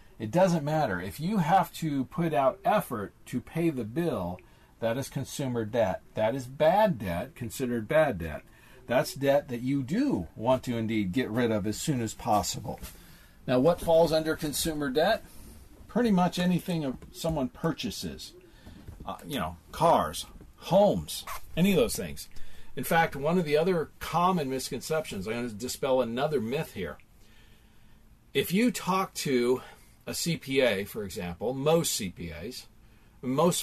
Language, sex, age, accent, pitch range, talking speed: English, male, 50-69, American, 115-165 Hz, 155 wpm